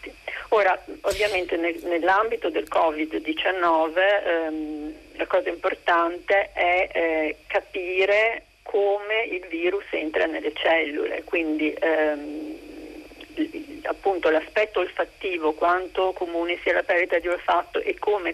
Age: 40-59